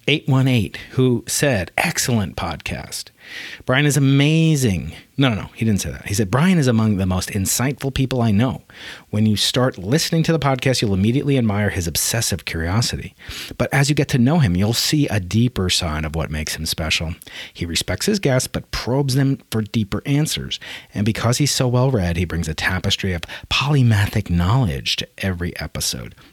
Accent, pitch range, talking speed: American, 100-130 Hz, 185 wpm